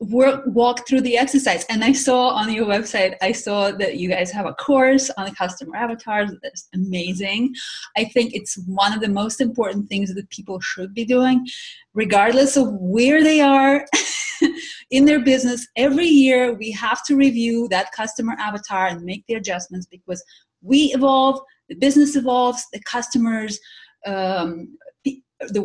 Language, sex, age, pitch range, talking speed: English, female, 30-49, 210-275 Hz, 160 wpm